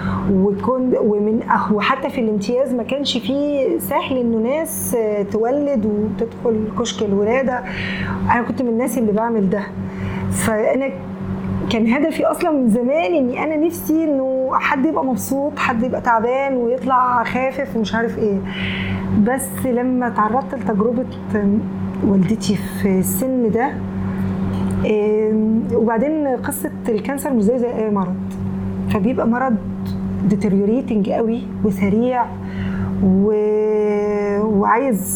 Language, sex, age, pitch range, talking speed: English, female, 20-39, 190-250 Hz, 110 wpm